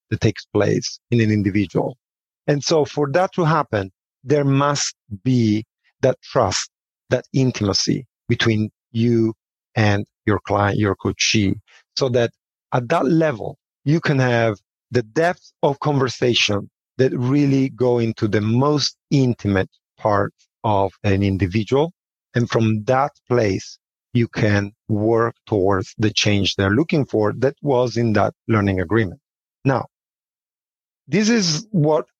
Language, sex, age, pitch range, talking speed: English, male, 40-59, 110-145 Hz, 135 wpm